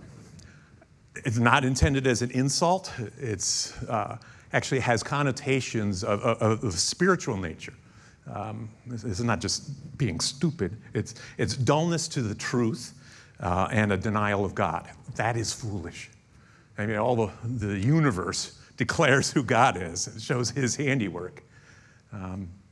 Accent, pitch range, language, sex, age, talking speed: American, 105-140 Hz, English, male, 50-69, 140 wpm